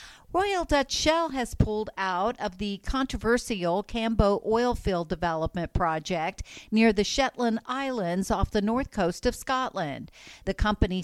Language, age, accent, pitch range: English, 50-69, American, 185-250 Hz